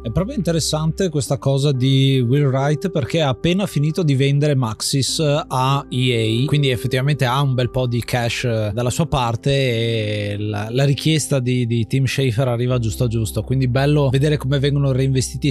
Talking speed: 180 wpm